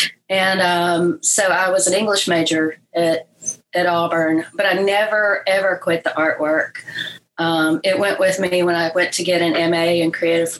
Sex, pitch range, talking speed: female, 165-200 Hz, 180 wpm